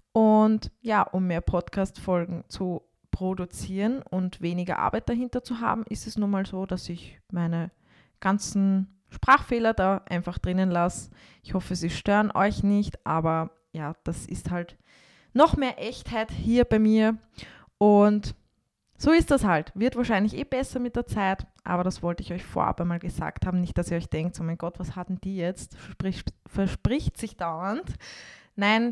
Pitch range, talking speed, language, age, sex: 175-215 Hz, 170 wpm, German, 20-39, female